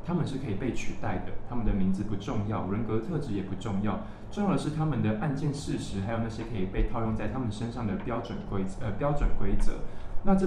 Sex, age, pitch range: male, 20-39, 100-115 Hz